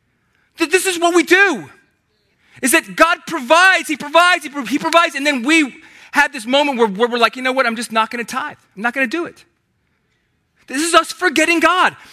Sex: male